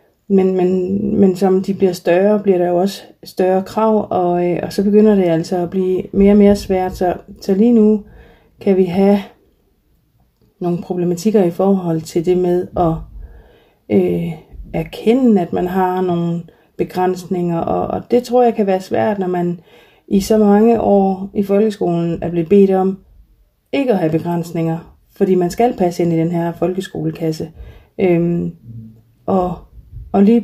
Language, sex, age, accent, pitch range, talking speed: Danish, female, 30-49, native, 175-205 Hz, 160 wpm